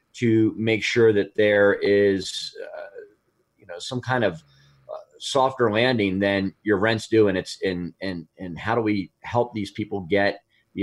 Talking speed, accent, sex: 175 wpm, American, male